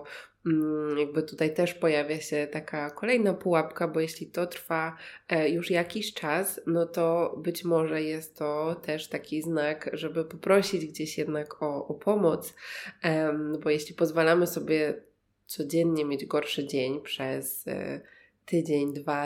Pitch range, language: 150-165 Hz, Polish